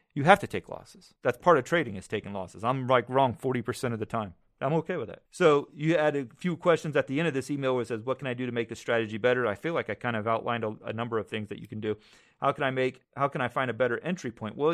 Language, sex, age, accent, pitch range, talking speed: English, male, 30-49, American, 115-145 Hz, 310 wpm